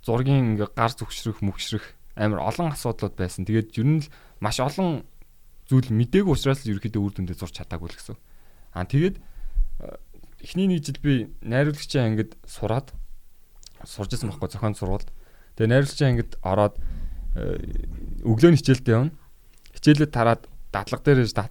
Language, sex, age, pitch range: Korean, male, 20-39, 100-135 Hz